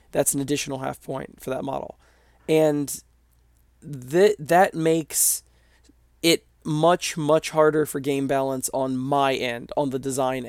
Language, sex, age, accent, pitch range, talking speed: English, male, 20-39, American, 130-150 Hz, 145 wpm